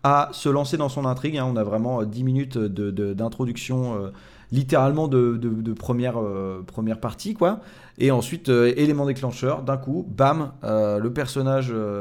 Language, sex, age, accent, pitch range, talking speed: French, male, 30-49, French, 115-150 Hz, 180 wpm